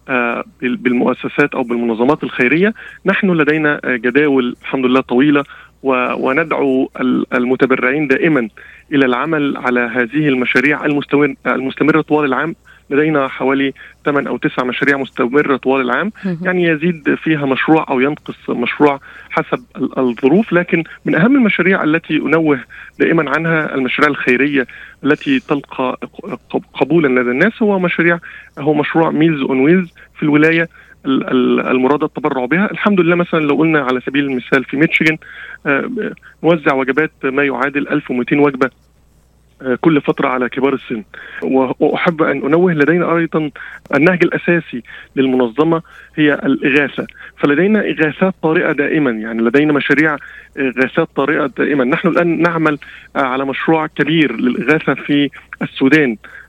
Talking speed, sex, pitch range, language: 125 wpm, male, 130-160 Hz, Arabic